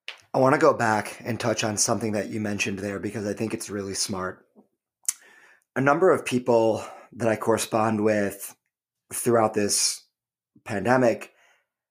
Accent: American